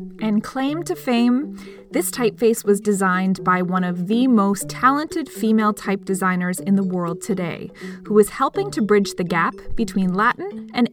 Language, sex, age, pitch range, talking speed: English, female, 20-39, 190-250 Hz, 170 wpm